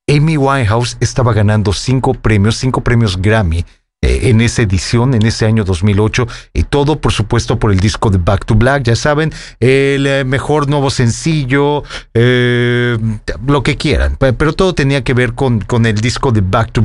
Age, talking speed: 40-59, 180 wpm